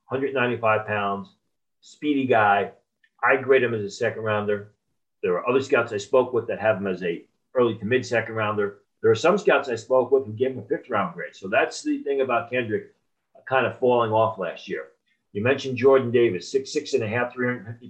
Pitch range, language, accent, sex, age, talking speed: 105-135 Hz, English, American, male, 40-59, 220 wpm